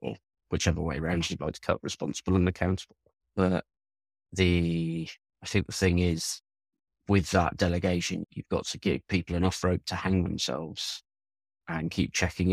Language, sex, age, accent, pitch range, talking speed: English, male, 30-49, British, 85-95 Hz, 165 wpm